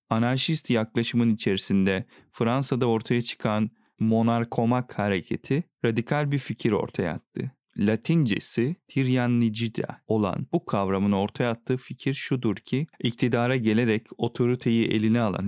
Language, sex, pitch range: Turkish, male, 110-130 Hz